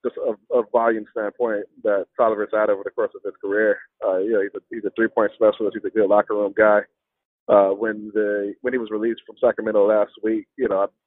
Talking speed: 240 wpm